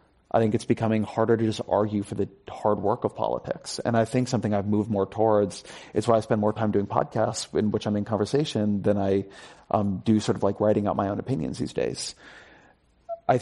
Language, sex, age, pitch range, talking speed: English, male, 30-49, 105-120 Hz, 225 wpm